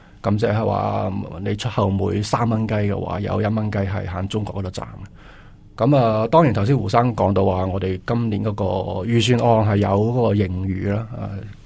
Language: Chinese